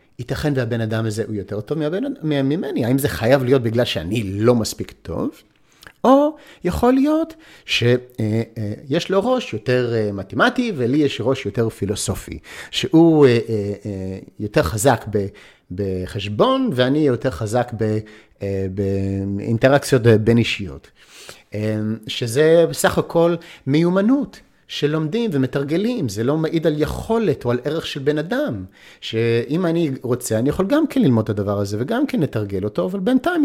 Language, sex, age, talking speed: Hebrew, male, 50-69, 135 wpm